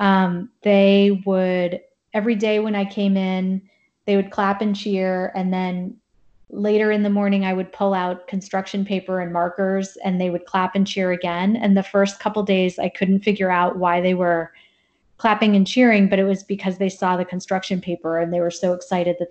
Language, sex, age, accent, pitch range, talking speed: English, female, 30-49, American, 185-210 Hz, 200 wpm